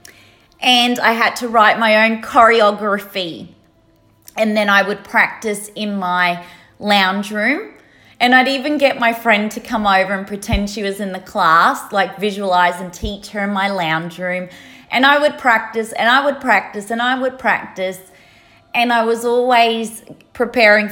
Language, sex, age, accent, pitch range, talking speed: English, female, 30-49, Australian, 190-235 Hz, 170 wpm